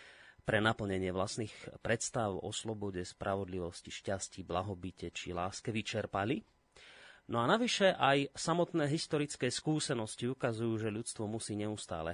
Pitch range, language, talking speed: 95-120 Hz, Slovak, 120 wpm